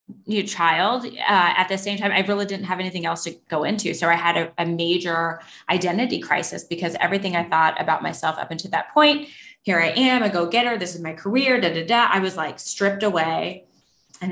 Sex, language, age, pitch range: female, English, 20-39, 165-195 Hz